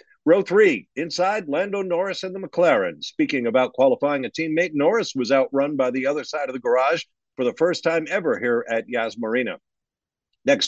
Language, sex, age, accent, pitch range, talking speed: English, male, 50-69, American, 120-180 Hz, 185 wpm